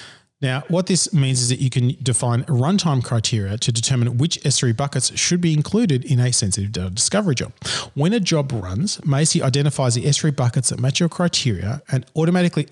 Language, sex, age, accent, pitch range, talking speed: English, male, 30-49, Australian, 120-155 Hz, 190 wpm